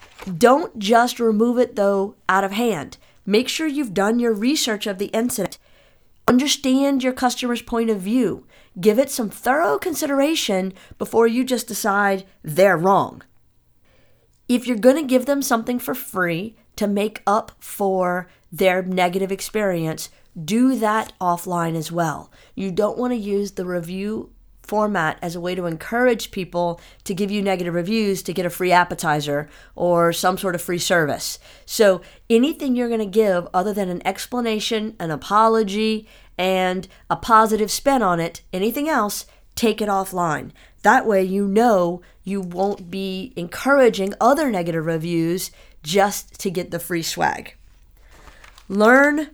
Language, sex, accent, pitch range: English, female, American, 185-235 Hz